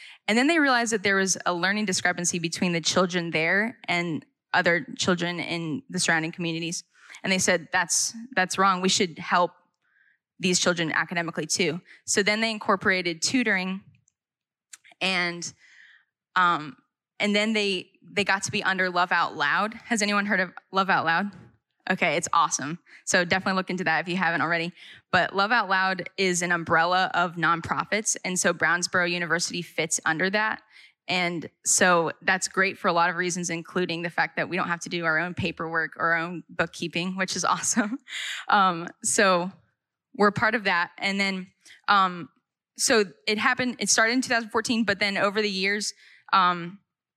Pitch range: 170-200 Hz